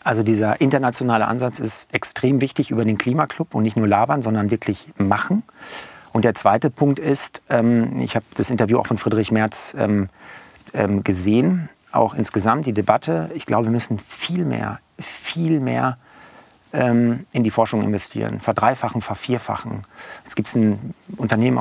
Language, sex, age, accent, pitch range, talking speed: German, male, 40-59, German, 110-130 Hz, 150 wpm